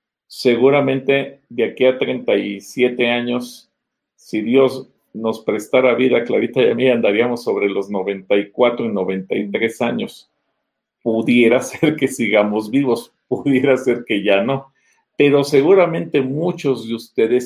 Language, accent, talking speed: Spanish, Mexican, 125 wpm